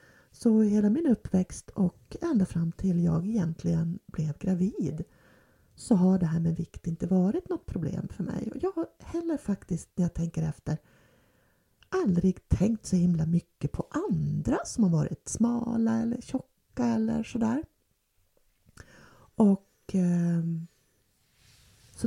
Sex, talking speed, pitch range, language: female, 135 wpm, 170-230 Hz, Swedish